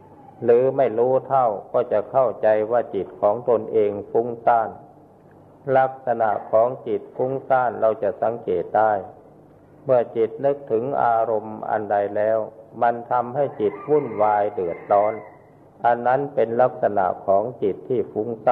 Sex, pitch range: male, 110-140 Hz